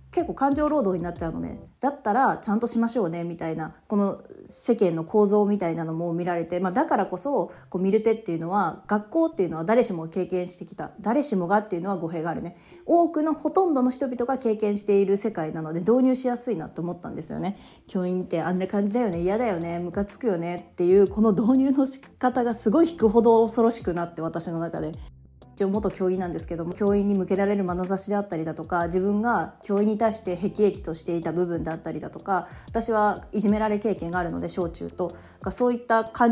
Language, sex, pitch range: Japanese, female, 170-225 Hz